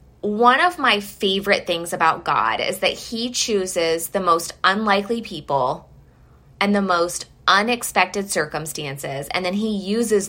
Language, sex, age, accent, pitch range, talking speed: English, female, 20-39, American, 170-205 Hz, 140 wpm